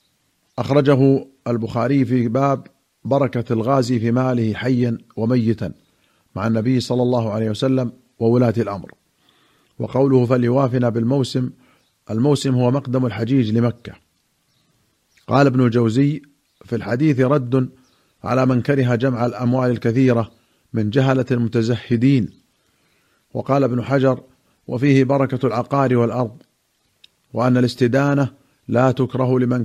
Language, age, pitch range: Arabic, 50-69, 120-135 Hz